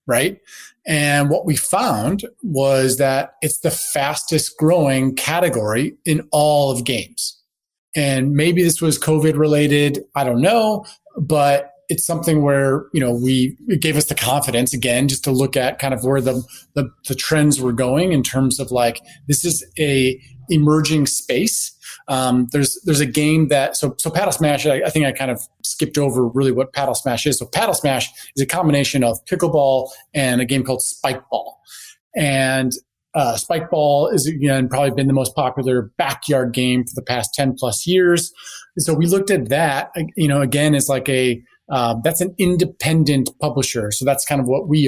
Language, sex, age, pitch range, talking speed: English, male, 30-49, 130-155 Hz, 185 wpm